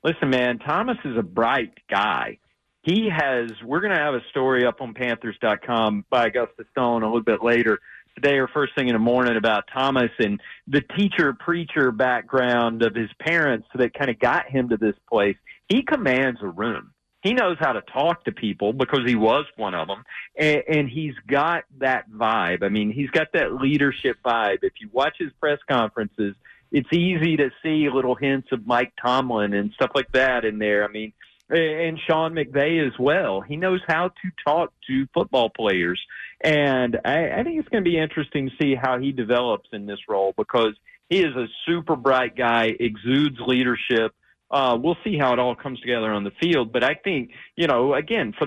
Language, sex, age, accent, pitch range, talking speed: English, male, 40-59, American, 120-155 Hz, 200 wpm